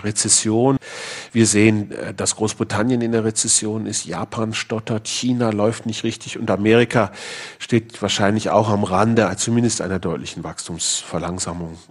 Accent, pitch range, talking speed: German, 95-115 Hz, 130 wpm